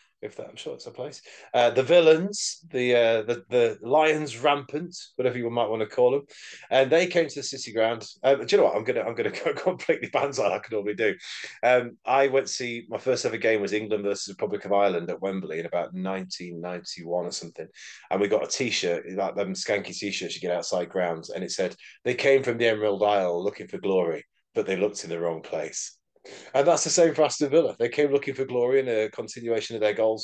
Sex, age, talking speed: male, 30-49, 230 wpm